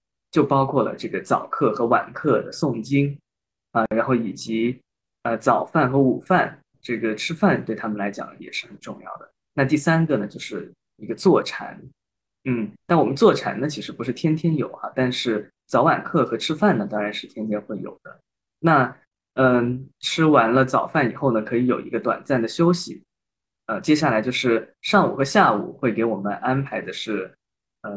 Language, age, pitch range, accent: Chinese, 20-39, 115-150 Hz, native